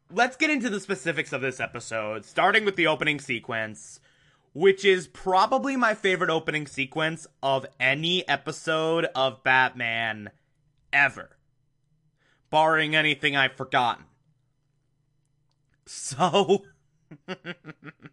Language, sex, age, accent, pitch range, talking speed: English, male, 20-39, American, 135-165 Hz, 105 wpm